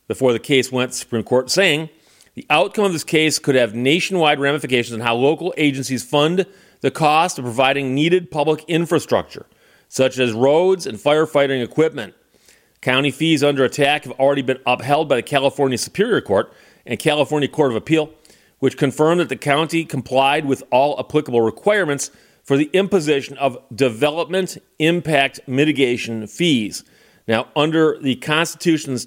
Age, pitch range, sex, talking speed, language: 40-59, 130-160 Hz, male, 155 wpm, English